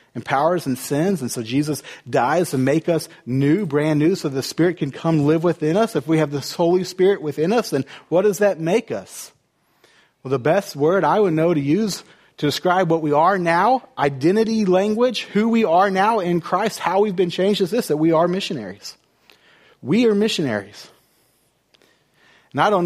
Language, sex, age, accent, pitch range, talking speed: English, male, 40-59, American, 145-190 Hz, 195 wpm